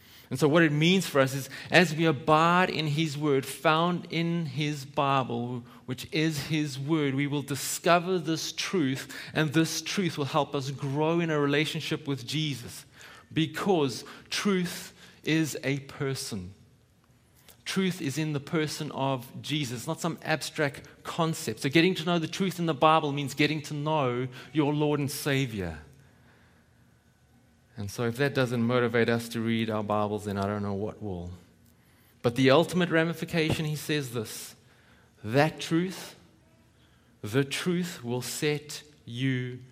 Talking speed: 155 wpm